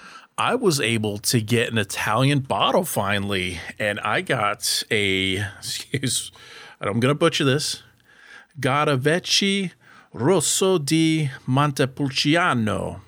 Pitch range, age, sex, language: 100-145 Hz, 40-59, male, English